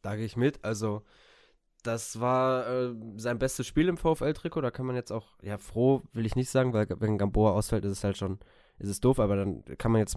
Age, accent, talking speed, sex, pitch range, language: 20-39, German, 235 wpm, male, 105-125 Hz, German